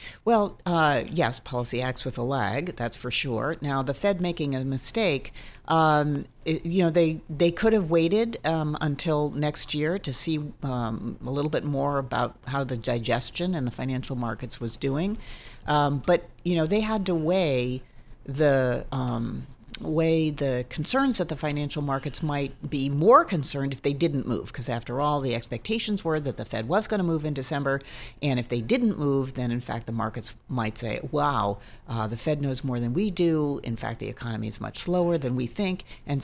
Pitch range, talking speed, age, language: 125-160 Hz, 195 wpm, 50-69, English